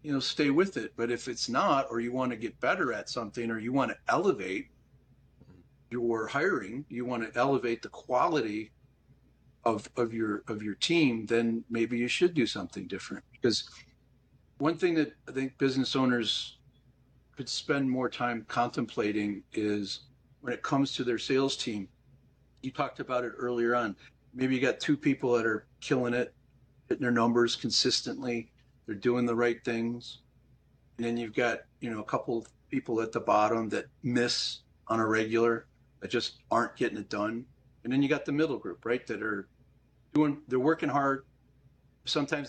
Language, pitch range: English, 115-135 Hz